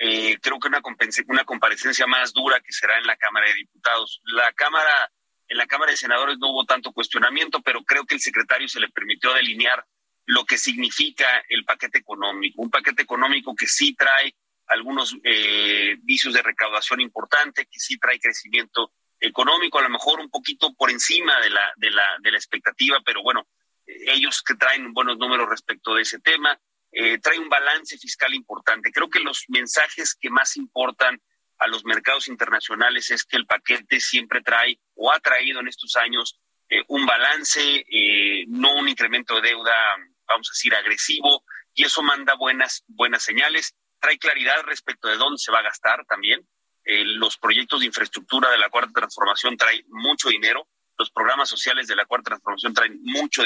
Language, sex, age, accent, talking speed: Spanish, male, 40-59, Mexican, 185 wpm